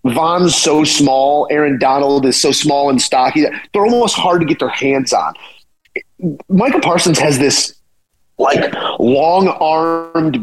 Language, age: English, 30-49